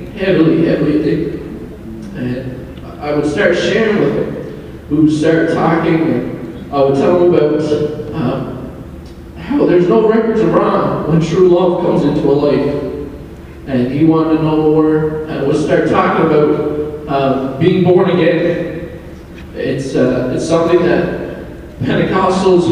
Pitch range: 155-190 Hz